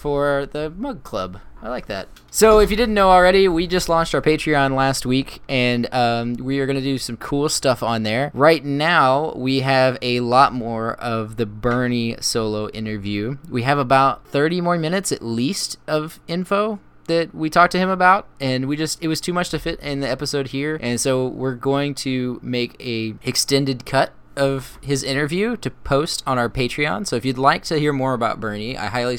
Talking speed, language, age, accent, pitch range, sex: 205 wpm, English, 20-39, American, 115-150 Hz, male